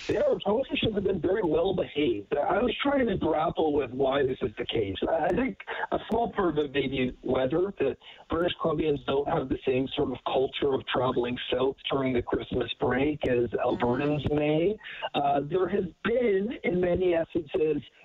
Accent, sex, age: American, male, 50-69